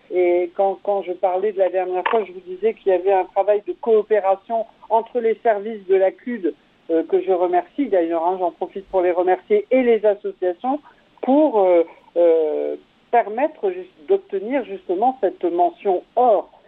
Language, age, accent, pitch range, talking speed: French, 50-69, French, 175-220 Hz, 175 wpm